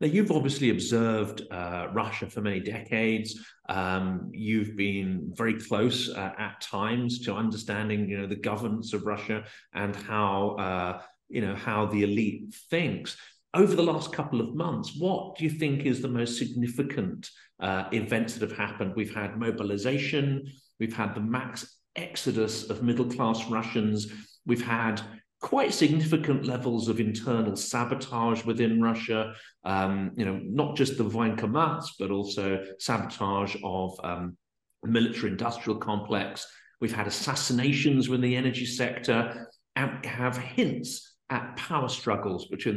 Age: 50-69